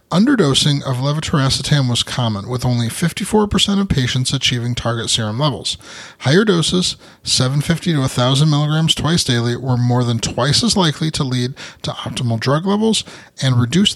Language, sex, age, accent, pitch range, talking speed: English, male, 30-49, American, 125-165 Hz, 155 wpm